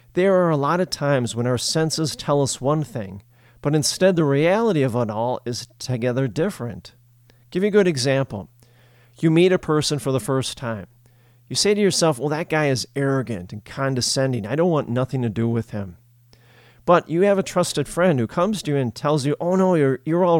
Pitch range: 120-155 Hz